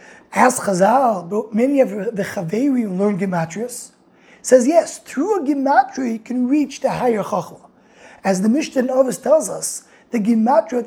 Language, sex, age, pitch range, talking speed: English, male, 20-39, 210-270 Hz, 160 wpm